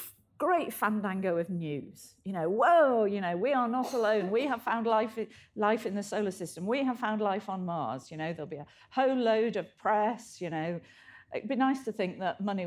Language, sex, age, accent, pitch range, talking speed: English, female, 50-69, British, 170-230 Hz, 220 wpm